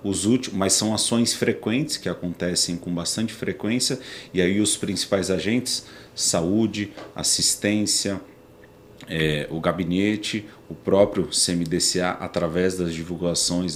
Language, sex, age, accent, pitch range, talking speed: Portuguese, male, 40-59, Brazilian, 90-110 Hz, 105 wpm